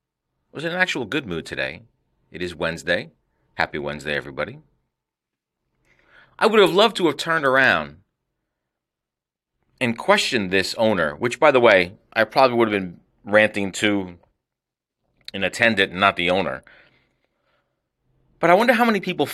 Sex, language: male, English